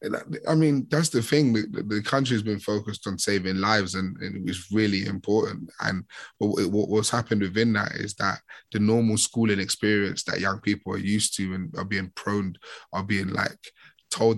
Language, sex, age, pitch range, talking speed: English, male, 20-39, 95-110 Hz, 180 wpm